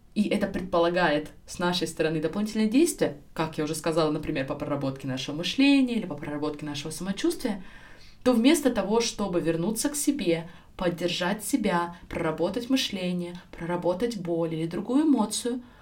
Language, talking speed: Russian, 145 wpm